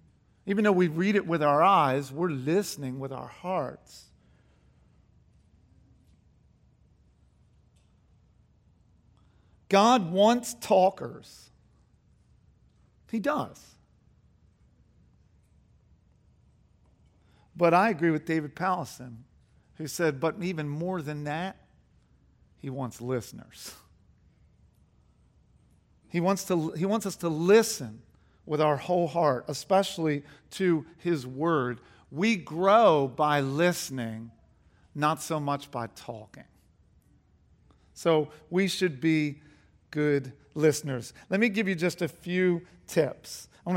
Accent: American